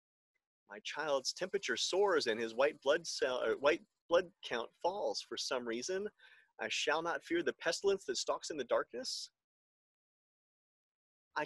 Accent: American